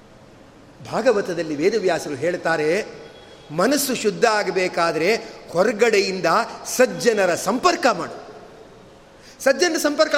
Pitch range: 220-285 Hz